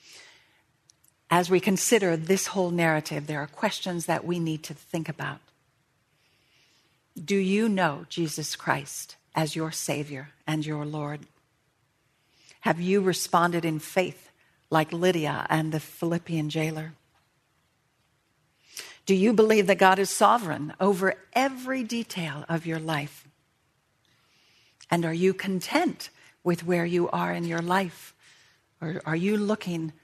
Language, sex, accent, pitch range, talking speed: English, female, American, 155-185 Hz, 130 wpm